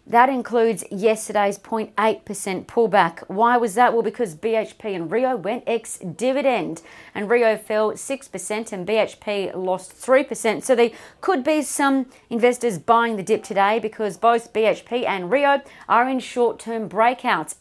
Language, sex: English, female